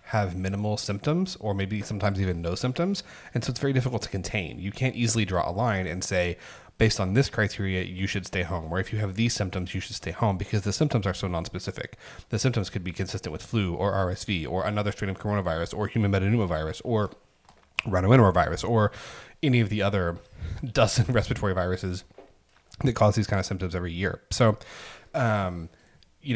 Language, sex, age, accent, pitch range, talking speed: English, male, 30-49, American, 90-110 Hz, 195 wpm